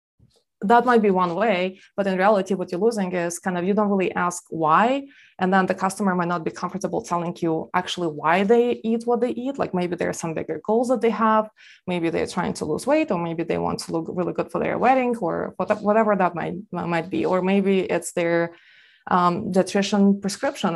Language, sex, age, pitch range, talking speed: English, female, 20-39, 175-215 Hz, 220 wpm